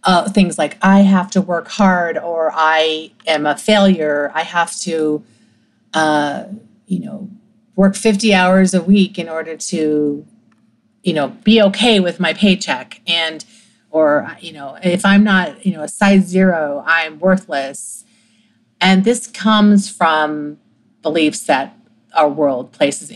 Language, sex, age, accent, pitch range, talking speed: English, female, 40-59, American, 160-215 Hz, 150 wpm